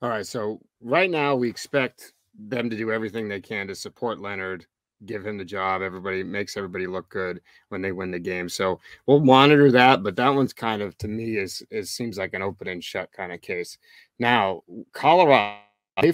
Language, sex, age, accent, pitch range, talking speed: English, male, 30-49, American, 105-135 Hz, 205 wpm